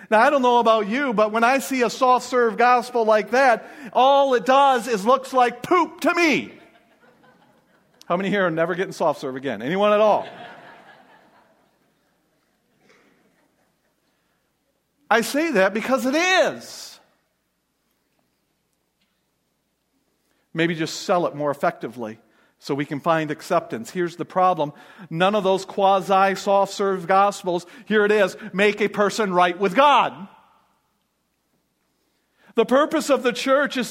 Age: 50-69